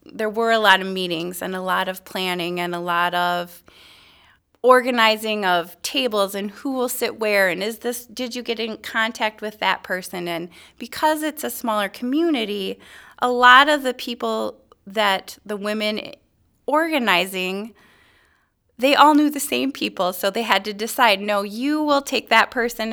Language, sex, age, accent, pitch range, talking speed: English, female, 20-39, American, 185-230 Hz, 175 wpm